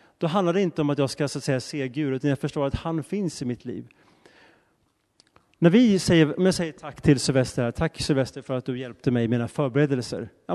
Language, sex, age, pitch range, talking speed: Swedish, male, 30-49, 125-170 Hz, 235 wpm